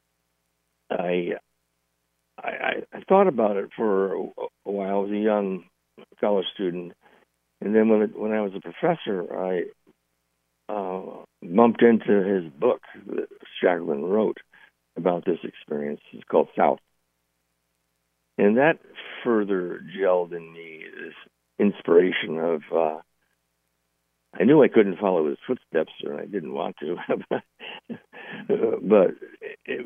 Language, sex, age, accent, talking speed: English, male, 60-79, American, 125 wpm